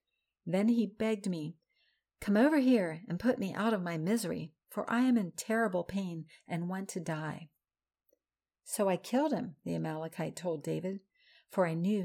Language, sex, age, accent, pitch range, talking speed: English, female, 50-69, American, 165-210 Hz, 175 wpm